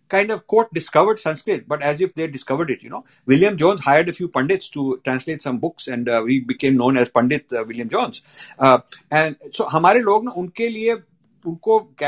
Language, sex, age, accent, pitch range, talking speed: English, male, 60-79, Indian, 130-205 Hz, 175 wpm